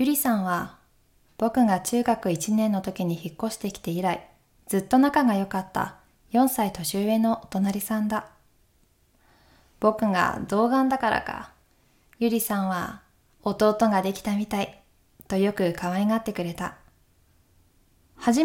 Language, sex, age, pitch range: Japanese, female, 20-39, 170-225 Hz